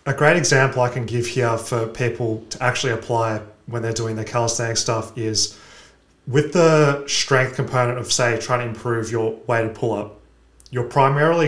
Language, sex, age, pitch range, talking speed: English, male, 30-49, 115-130 Hz, 175 wpm